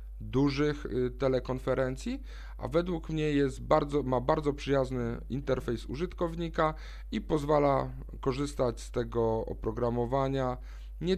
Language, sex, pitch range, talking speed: Polish, male, 110-140 Hz, 90 wpm